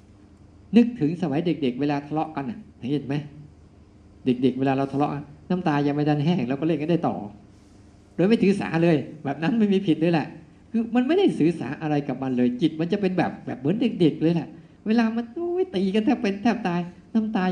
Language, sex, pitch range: Thai, male, 105-165 Hz